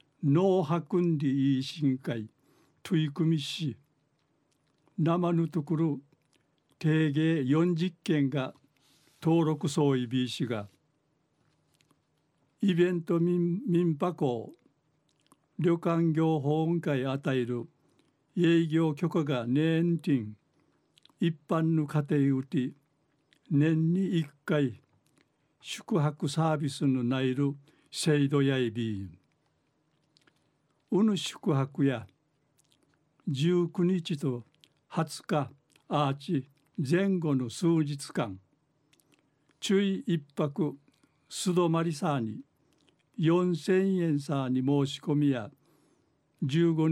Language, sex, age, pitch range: Japanese, male, 60-79, 140-165 Hz